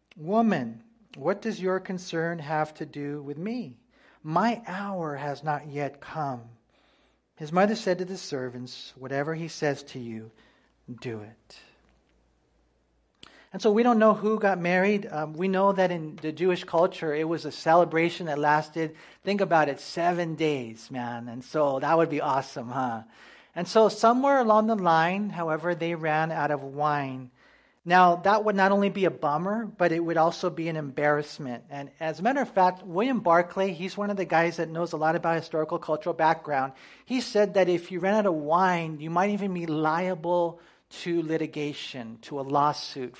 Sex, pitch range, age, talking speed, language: male, 145-190 Hz, 40-59, 180 wpm, English